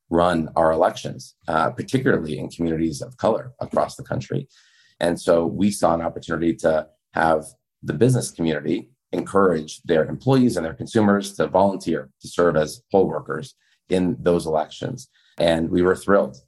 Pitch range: 80-90 Hz